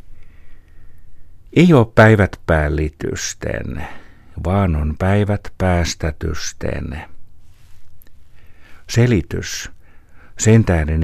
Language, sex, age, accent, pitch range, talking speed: Finnish, male, 60-79, native, 80-100 Hz, 60 wpm